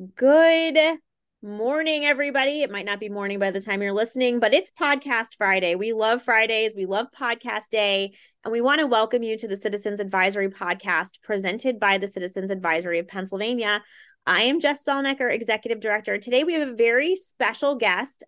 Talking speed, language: 180 wpm, English